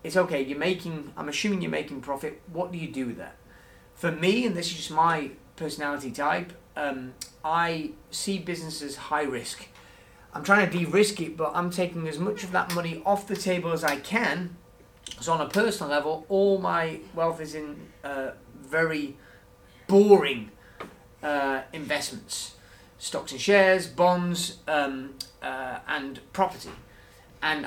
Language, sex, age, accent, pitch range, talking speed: English, male, 30-49, British, 145-180 Hz, 160 wpm